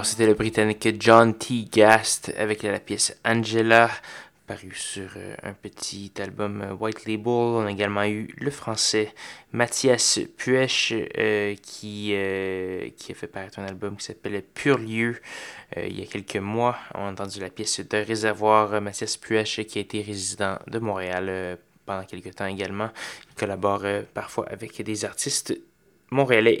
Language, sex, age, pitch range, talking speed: French, male, 20-39, 100-115 Hz, 170 wpm